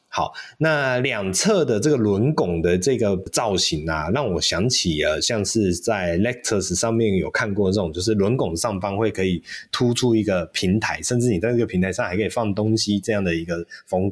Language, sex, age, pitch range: Chinese, male, 20-39, 90-130 Hz